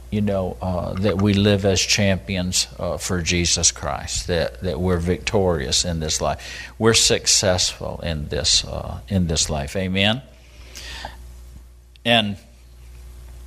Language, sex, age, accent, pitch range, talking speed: English, male, 50-69, American, 70-110 Hz, 130 wpm